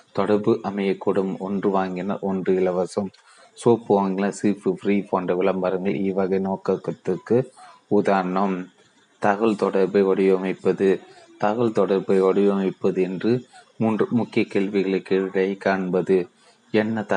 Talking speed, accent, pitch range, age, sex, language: 95 wpm, native, 95-105 Hz, 30-49, male, Tamil